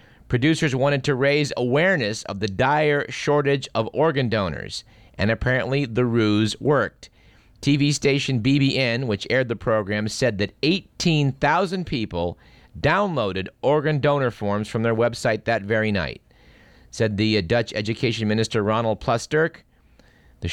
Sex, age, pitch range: male, 50-69, 110-145 Hz